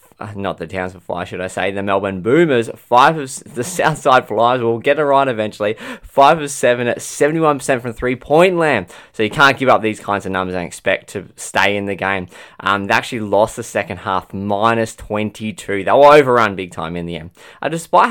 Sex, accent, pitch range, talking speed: male, Australian, 100-135 Hz, 210 wpm